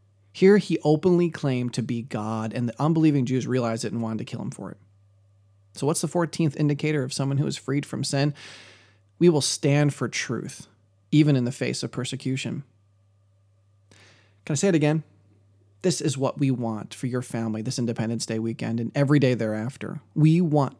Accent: American